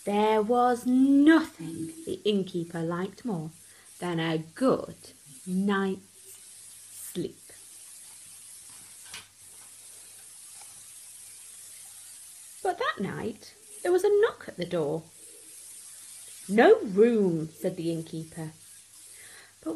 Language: English